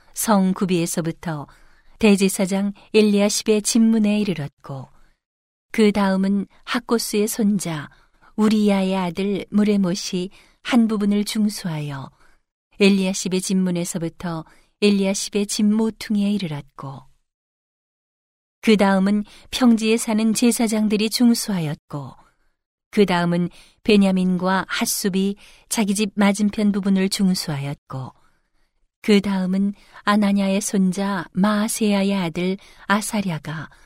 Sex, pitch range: female, 175-210 Hz